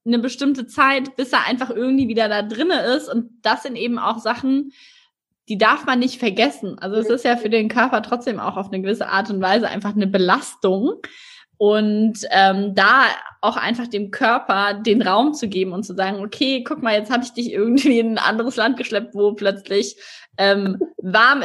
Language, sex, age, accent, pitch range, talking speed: German, female, 20-39, German, 210-255 Hz, 200 wpm